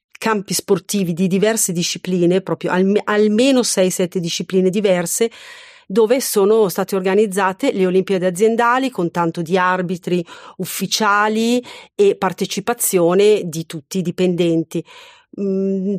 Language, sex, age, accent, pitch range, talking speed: Italian, female, 40-59, native, 180-205 Hz, 115 wpm